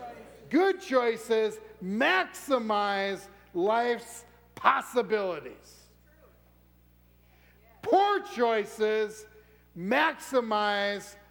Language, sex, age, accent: English, male, 60-79, American